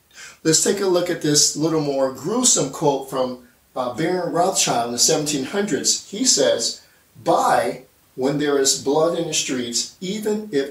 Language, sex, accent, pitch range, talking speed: English, male, American, 130-175 Hz, 160 wpm